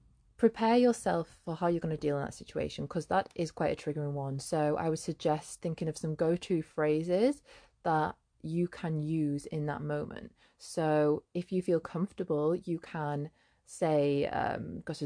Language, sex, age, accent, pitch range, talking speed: English, female, 20-39, British, 150-180 Hz, 165 wpm